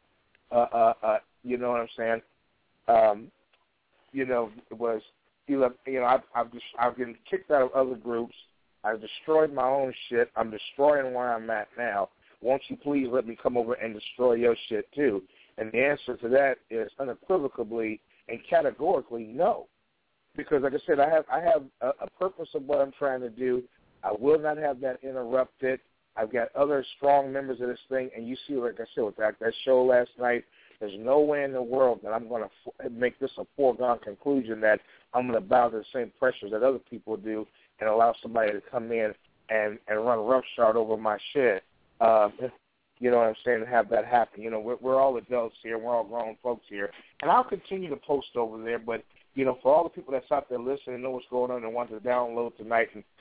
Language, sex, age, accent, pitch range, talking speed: English, male, 50-69, American, 115-135 Hz, 220 wpm